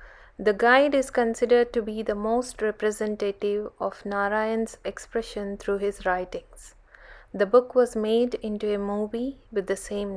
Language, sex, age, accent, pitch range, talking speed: Telugu, female, 20-39, native, 200-235 Hz, 150 wpm